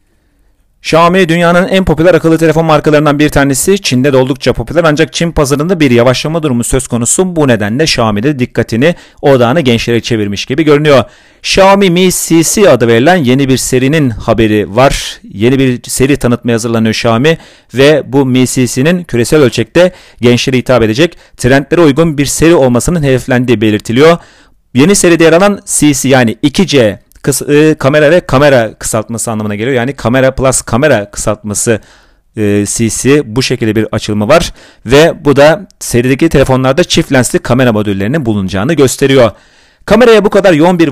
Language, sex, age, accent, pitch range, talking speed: Turkish, male, 40-59, native, 115-160 Hz, 155 wpm